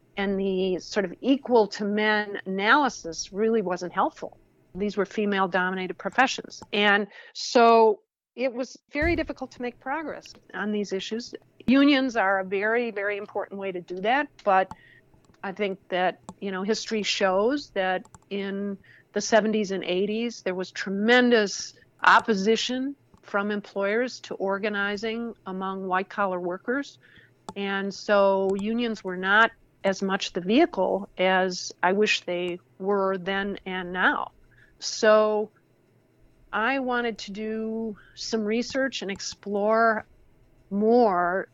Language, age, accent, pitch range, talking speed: English, 50-69, American, 190-225 Hz, 125 wpm